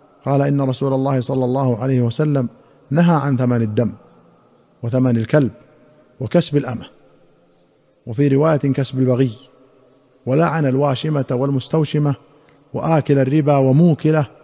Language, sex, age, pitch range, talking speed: Arabic, male, 50-69, 130-155 Hz, 110 wpm